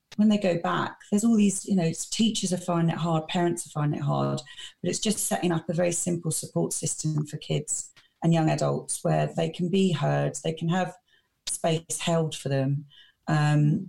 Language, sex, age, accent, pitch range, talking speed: English, female, 30-49, British, 150-185 Hz, 205 wpm